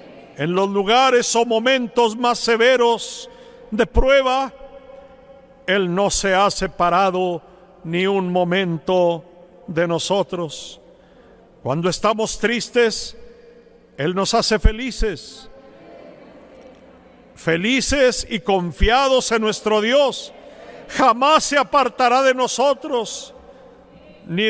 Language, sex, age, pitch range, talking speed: Spanish, male, 50-69, 185-235 Hz, 95 wpm